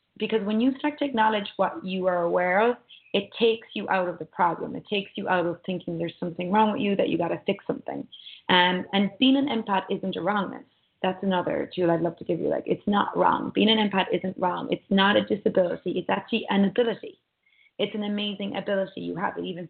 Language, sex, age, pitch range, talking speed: English, female, 20-39, 180-210 Hz, 230 wpm